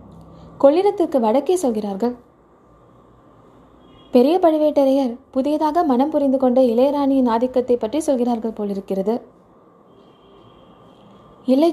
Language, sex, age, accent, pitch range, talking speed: Tamil, female, 20-39, native, 235-300 Hz, 70 wpm